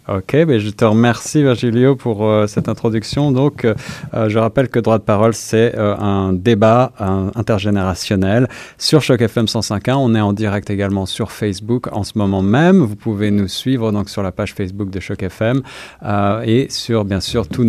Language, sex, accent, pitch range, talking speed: French, male, French, 105-130 Hz, 195 wpm